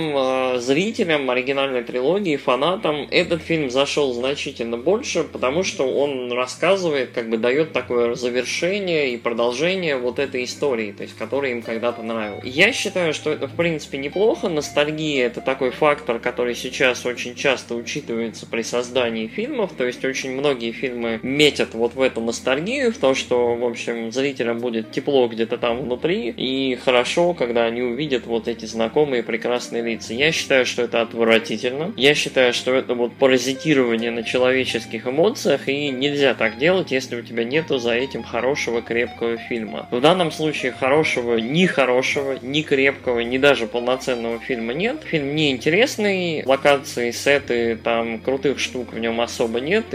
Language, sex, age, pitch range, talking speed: Russian, male, 20-39, 115-145 Hz, 155 wpm